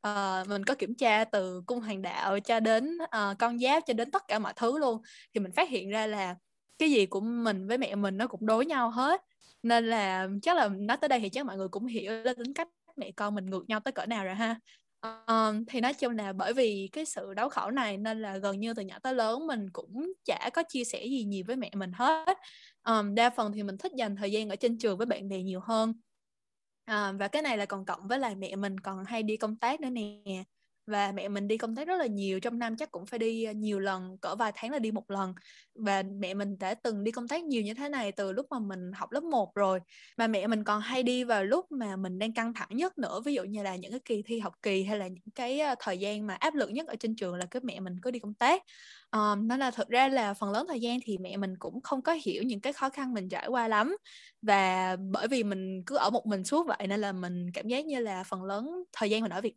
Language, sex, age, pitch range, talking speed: Vietnamese, female, 20-39, 200-250 Hz, 270 wpm